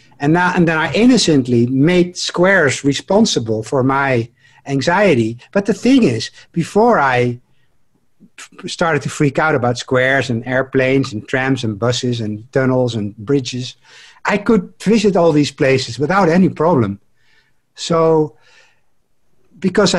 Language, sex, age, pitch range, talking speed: English, male, 60-79, 125-175 Hz, 140 wpm